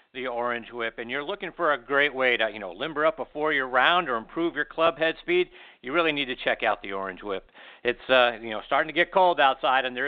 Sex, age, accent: male, 50-69, American